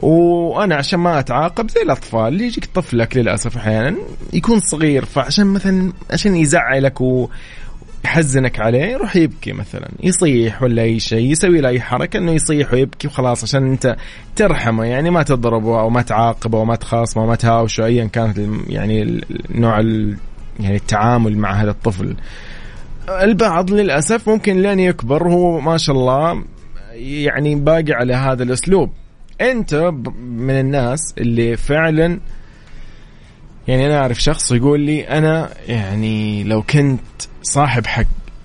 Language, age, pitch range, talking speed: Arabic, 20-39, 115-155 Hz, 135 wpm